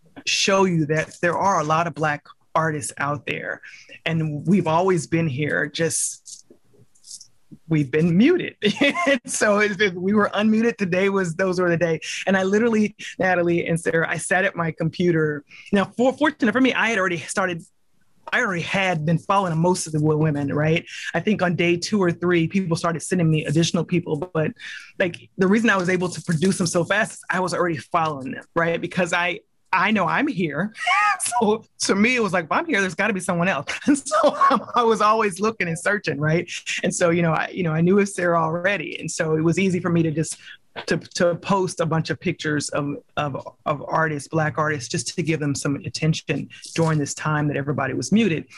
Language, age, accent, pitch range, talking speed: English, 20-39, American, 160-195 Hz, 210 wpm